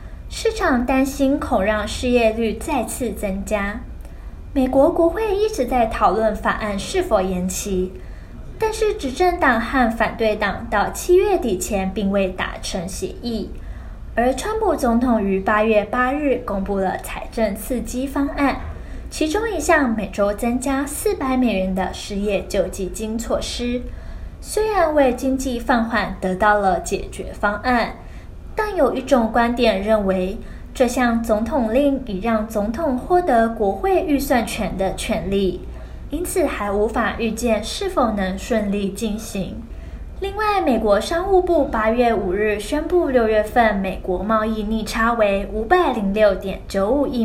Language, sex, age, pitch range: Chinese, female, 10-29, 205-275 Hz